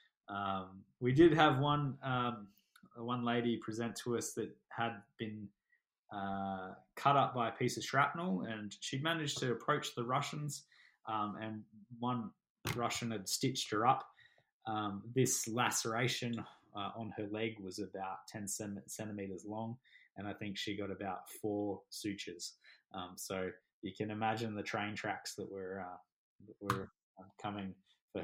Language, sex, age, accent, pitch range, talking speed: English, male, 20-39, Australian, 100-120 Hz, 155 wpm